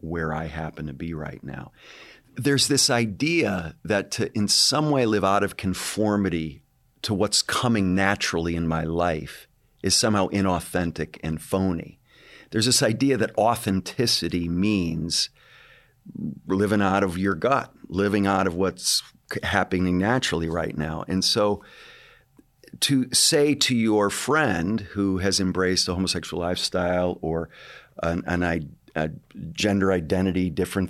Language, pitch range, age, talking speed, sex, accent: English, 90-105 Hz, 50-69, 135 wpm, male, American